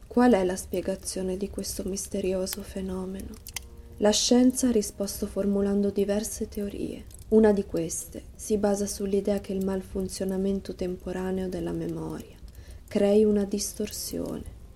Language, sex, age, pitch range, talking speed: Italian, female, 20-39, 180-205 Hz, 120 wpm